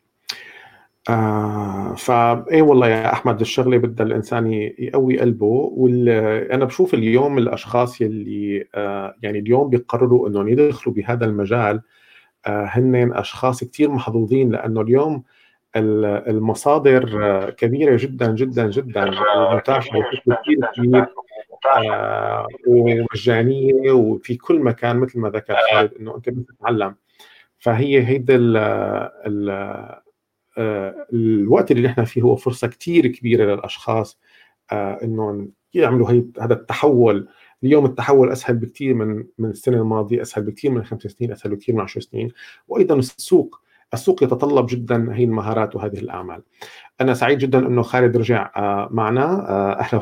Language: Arabic